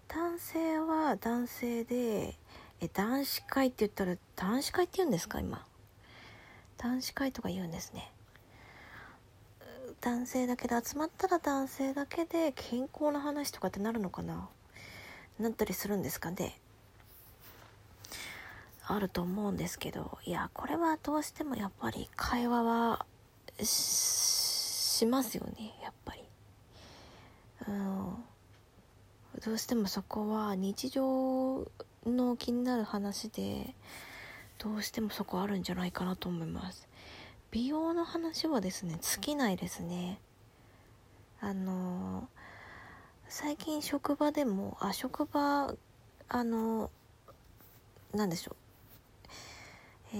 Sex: female